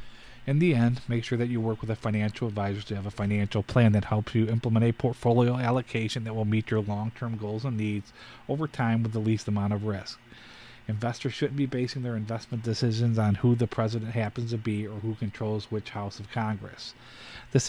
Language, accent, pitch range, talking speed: English, American, 105-120 Hz, 210 wpm